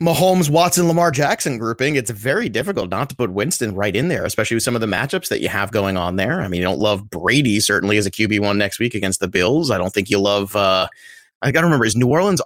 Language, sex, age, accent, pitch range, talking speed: English, male, 30-49, American, 110-160 Hz, 265 wpm